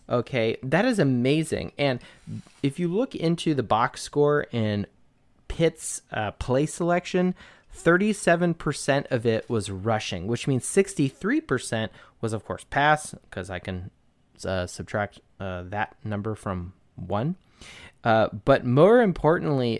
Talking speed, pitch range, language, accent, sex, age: 130 wpm, 110-165 Hz, English, American, male, 30-49